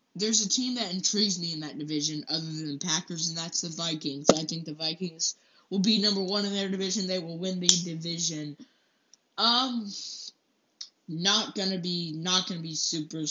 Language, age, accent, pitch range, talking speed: English, 10-29, American, 155-210 Hz, 185 wpm